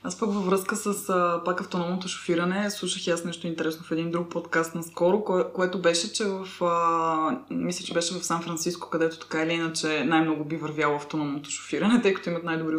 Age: 20-39